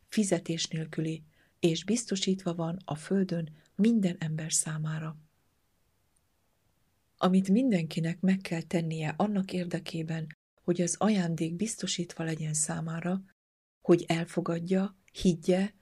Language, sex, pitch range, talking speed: Hungarian, female, 165-190 Hz, 100 wpm